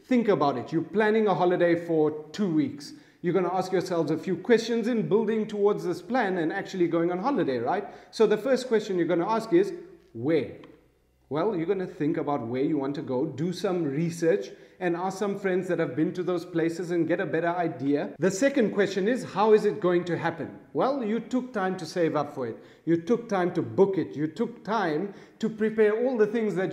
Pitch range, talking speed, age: 160-210 Hz, 225 wpm, 40-59